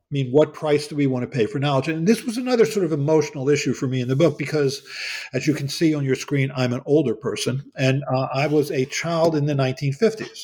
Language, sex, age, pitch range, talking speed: English, male, 50-69, 130-160 Hz, 260 wpm